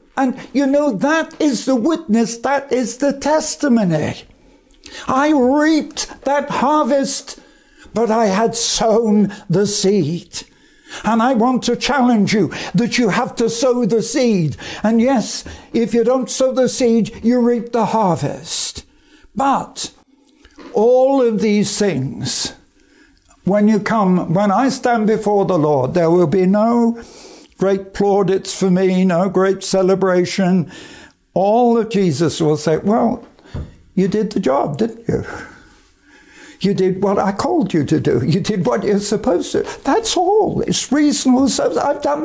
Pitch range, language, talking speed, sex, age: 190-260 Hz, English, 150 wpm, male, 60-79